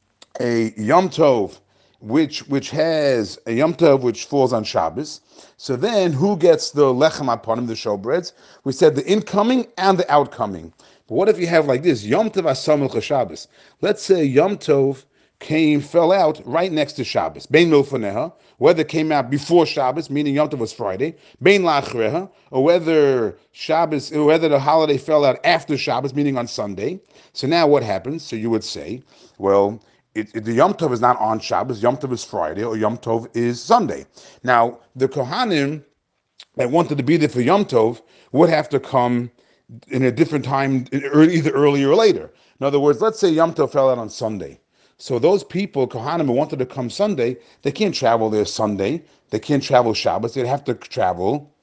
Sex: male